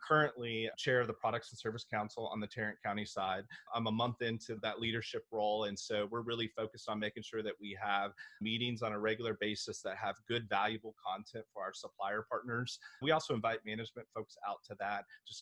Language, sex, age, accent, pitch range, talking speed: English, male, 30-49, American, 105-120 Hz, 210 wpm